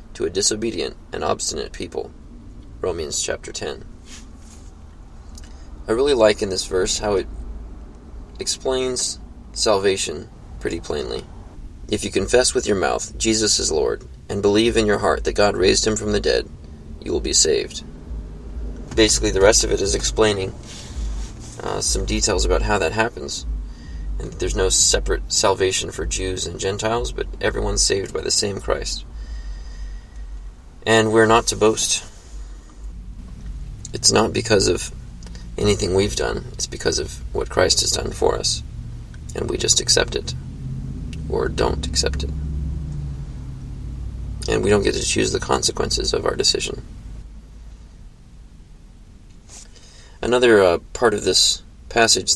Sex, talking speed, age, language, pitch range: male, 140 wpm, 20-39, English, 75-110 Hz